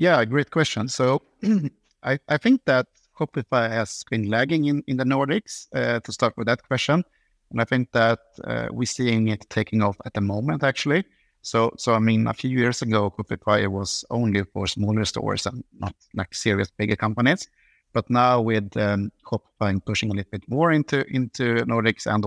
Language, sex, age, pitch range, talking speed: English, male, 50-69, 105-130 Hz, 190 wpm